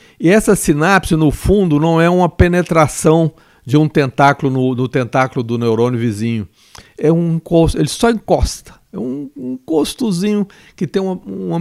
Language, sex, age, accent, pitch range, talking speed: English, male, 60-79, Brazilian, 130-175 Hz, 160 wpm